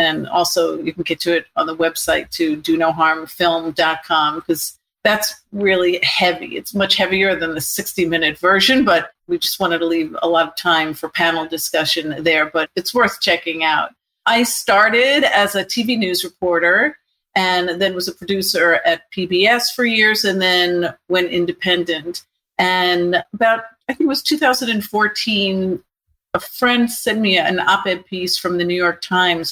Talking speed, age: 170 wpm, 50-69